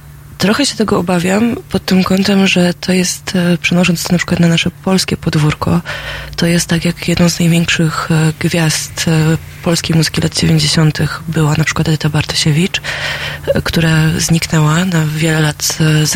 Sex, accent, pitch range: female, native, 160-185 Hz